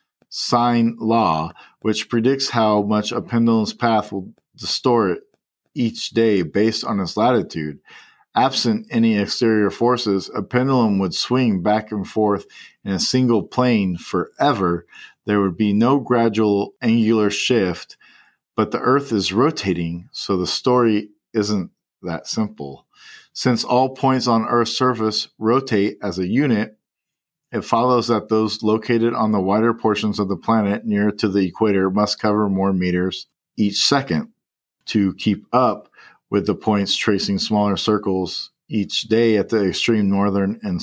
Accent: American